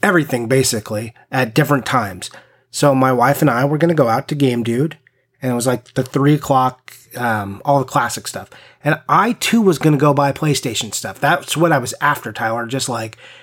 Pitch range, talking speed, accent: 125-150 Hz, 215 wpm, American